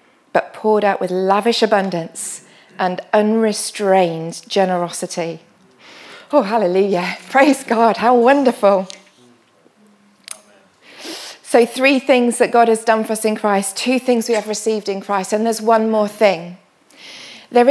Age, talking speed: 30-49, 130 wpm